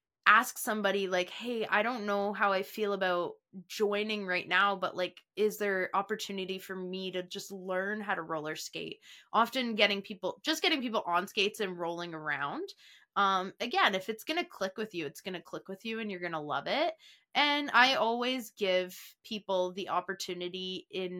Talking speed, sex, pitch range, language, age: 195 wpm, female, 180-235 Hz, English, 20-39